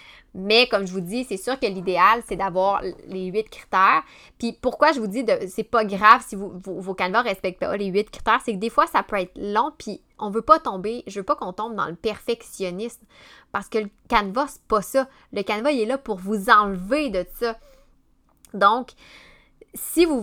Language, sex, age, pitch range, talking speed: French, female, 20-39, 190-230 Hz, 230 wpm